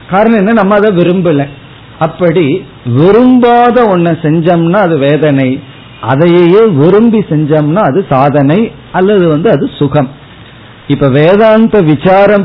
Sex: male